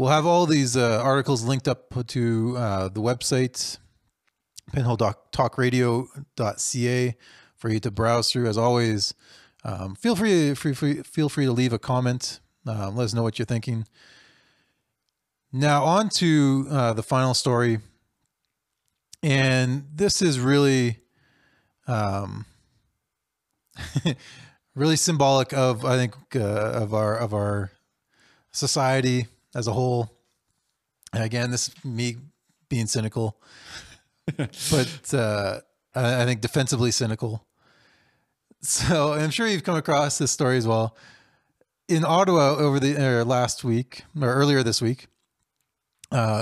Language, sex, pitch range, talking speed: English, male, 115-140 Hz, 125 wpm